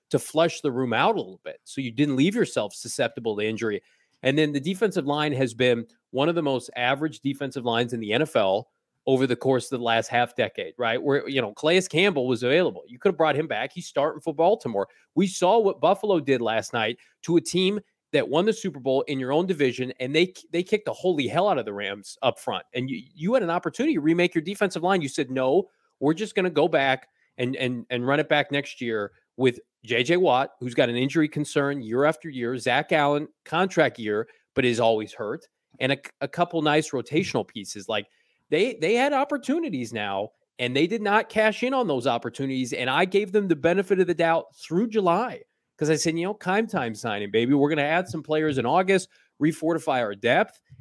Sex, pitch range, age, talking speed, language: male, 125-175 Hz, 30-49, 225 wpm, English